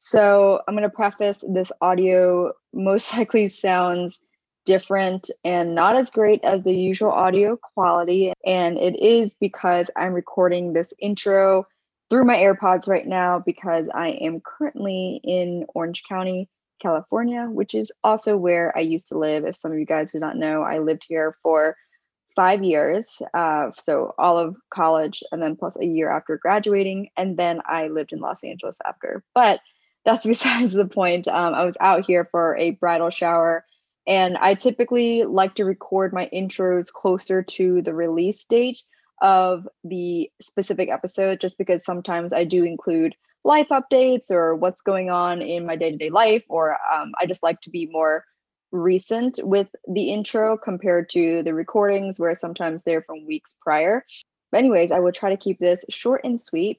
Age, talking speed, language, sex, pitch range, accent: 20-39, 170 wpm, English, female, 170-205 Hz, American